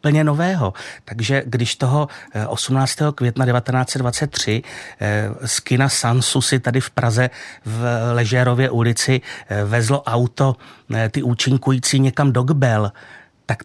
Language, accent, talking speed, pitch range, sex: Czech, native, 110 wpm, 115-135 Hz, male